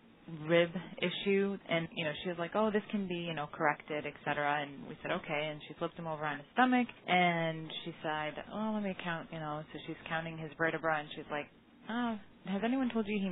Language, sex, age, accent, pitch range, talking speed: English, female, 30-49, American, 150-185 Hz, 235 wpm